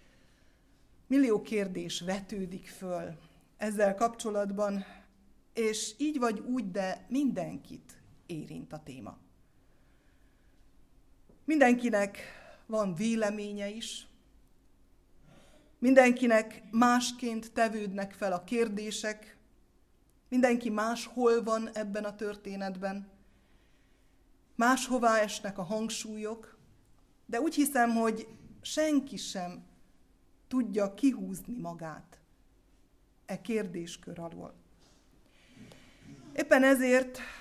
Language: Hungarian